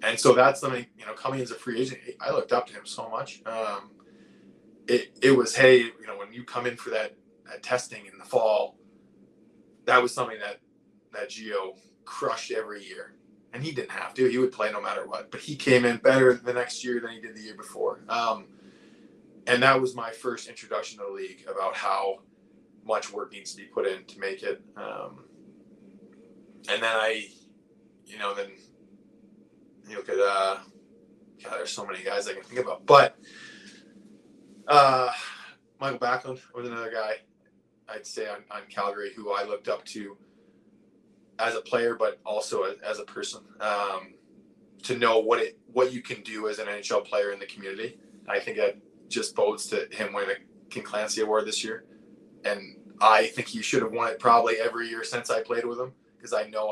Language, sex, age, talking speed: English, male, 20-39, 195 wpm